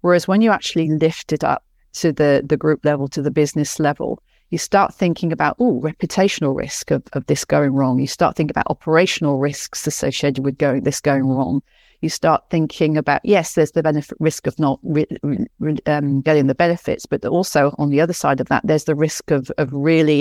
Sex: female